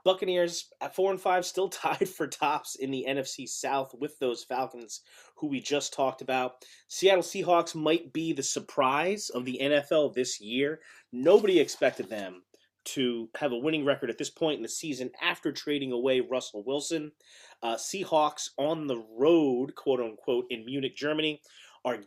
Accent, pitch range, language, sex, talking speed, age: American, 125-165 Hz, English, male, 170 wpm, 30-49